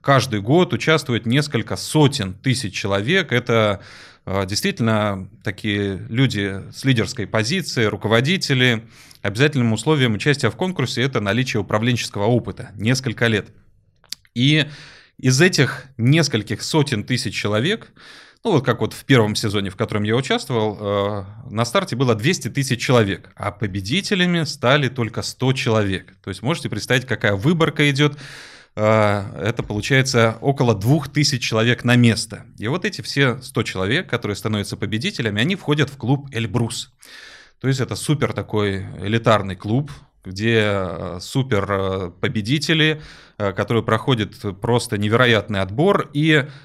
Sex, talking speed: male, 130 wpm